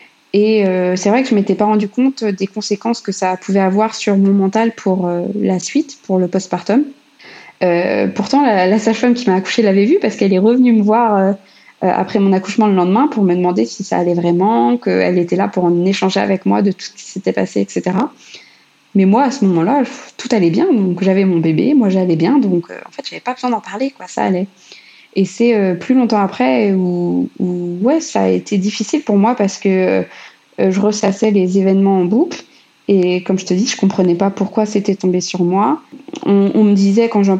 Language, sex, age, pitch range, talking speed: French, female, 20-39, 185-220 Hz, 230 wpm